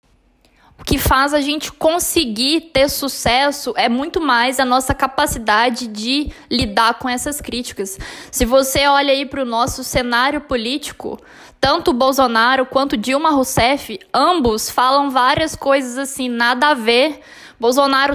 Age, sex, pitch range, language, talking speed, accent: 10-29, female, 245-295 Hz, Portuguese, 140 wpm, Brazilian